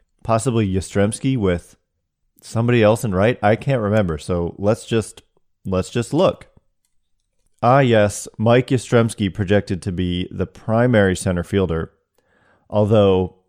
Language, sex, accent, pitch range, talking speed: English, male, American, 90-115 Hz, 125 wpm